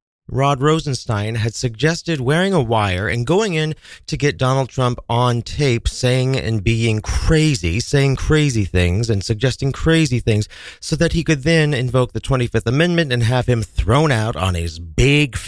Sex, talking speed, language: male, 170 wpm, English